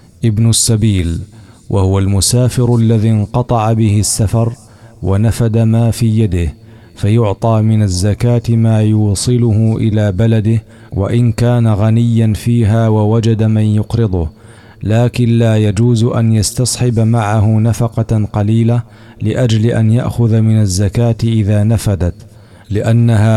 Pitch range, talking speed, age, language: 105-115 Hz, 110 wpm, 40-59, Arabic